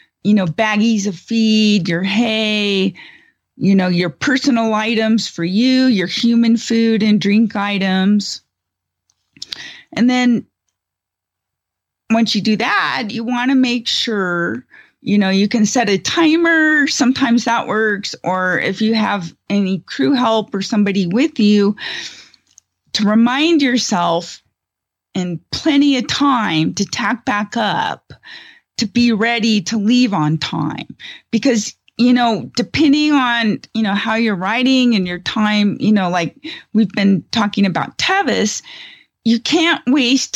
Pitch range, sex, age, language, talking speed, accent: 195-245 Hz, female, 30-49, English, 140 wpm, American